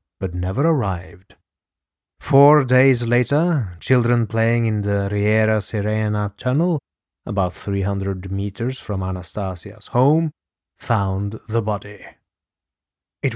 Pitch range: 95-125 Hz